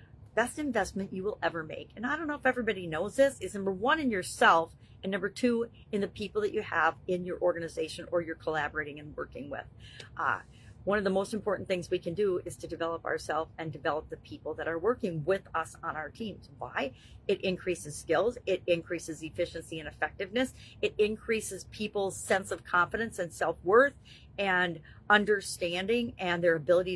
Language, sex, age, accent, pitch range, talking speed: English, female, 40-59, American, 175-210 Hz, 190 wpm